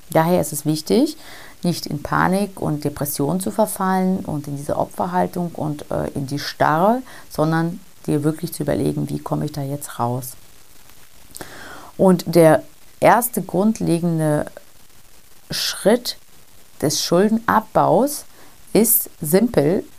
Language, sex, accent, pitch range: German, female, German, 145-185 Hz